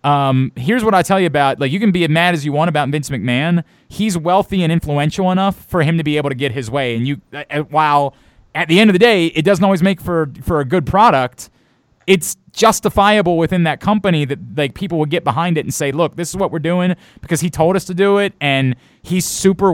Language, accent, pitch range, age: English, American, 145-195 Hz, 30-49